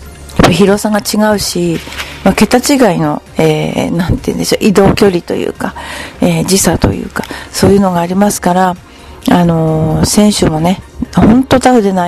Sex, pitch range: female, 180-230 Hz